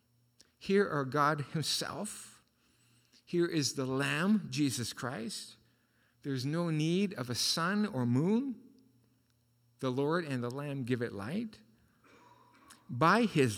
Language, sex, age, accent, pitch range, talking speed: English, male, 50-69, American, 125-175 Hz, 125 wpm